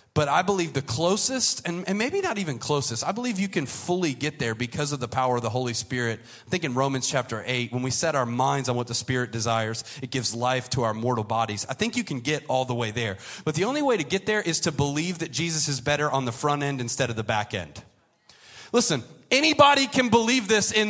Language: English